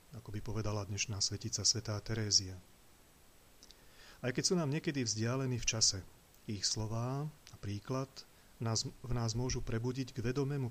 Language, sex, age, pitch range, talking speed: Slovak, male, 40-59, 110-125 Hz, 140 wpm